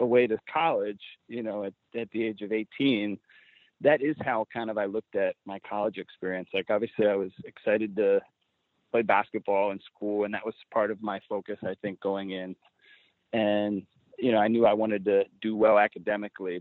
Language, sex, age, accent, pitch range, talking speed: English, male, 30-49, American, 105-130 Hz, 195 wpm